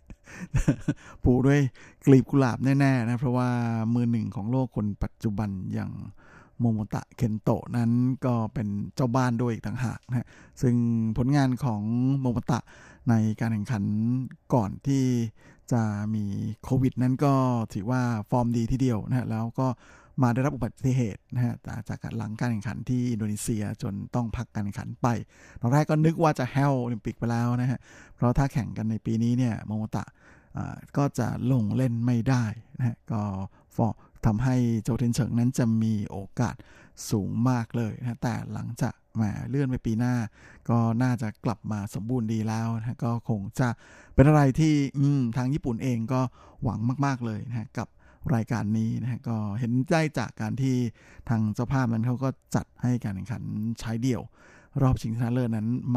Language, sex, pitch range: Thai, male, 110-130 Hz